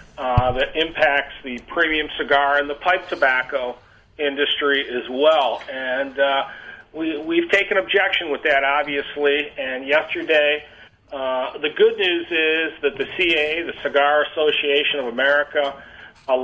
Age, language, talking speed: 40-59, English, 140 wpm